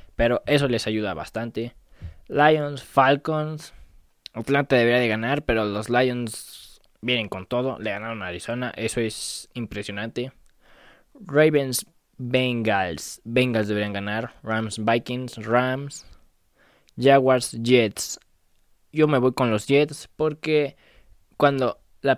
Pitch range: 110-135 Hz